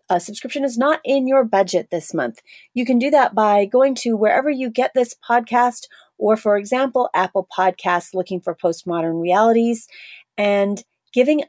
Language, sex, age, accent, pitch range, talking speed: English, female, 30-49, American, 185-245 Hz, 165 wpm